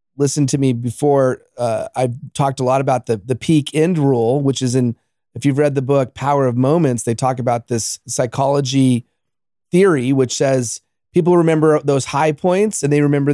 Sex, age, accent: male, 30-49, American